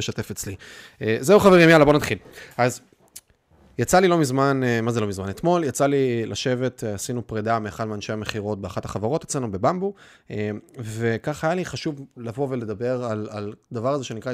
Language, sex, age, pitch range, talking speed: Hebrew, male, 20-39, 110-135 Hz, 165 wpm